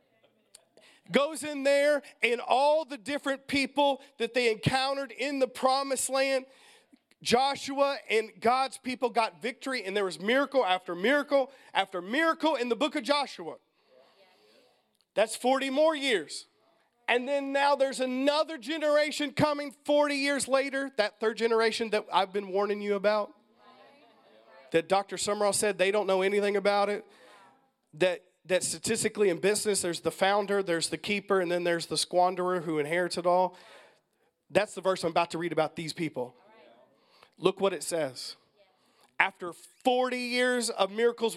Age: 40-59